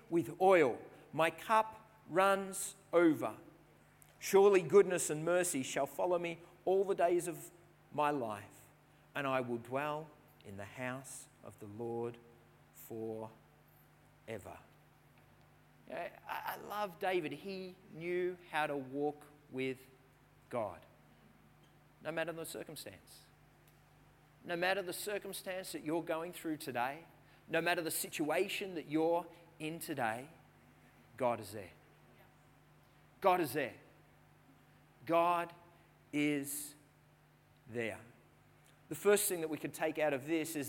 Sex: male